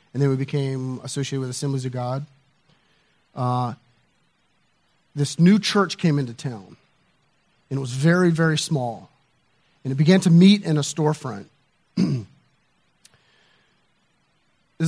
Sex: male